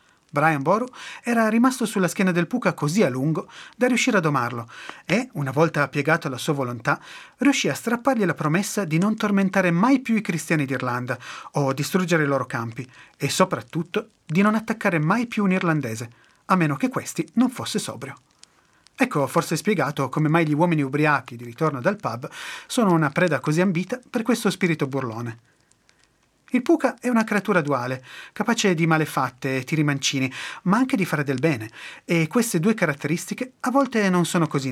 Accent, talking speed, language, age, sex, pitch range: native, 180 wpm, Italian, 30-49, male, 145-215 Hz